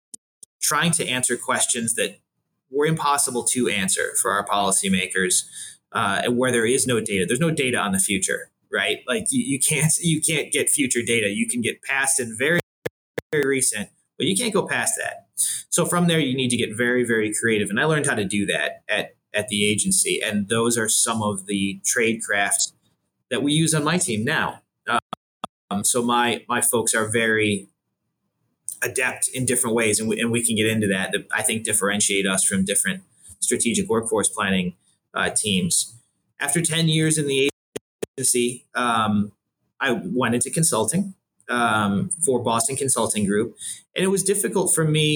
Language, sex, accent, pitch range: English, male, American, 110-150 Hz